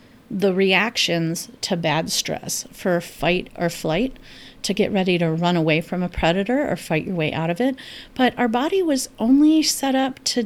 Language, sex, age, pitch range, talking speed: English, female, 40-59, 180-235 Hz, 190 wpm